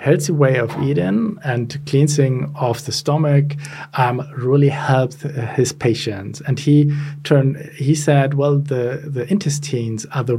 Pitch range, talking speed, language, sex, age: 130-150 Hz, 150 wpm, English, male, 40-59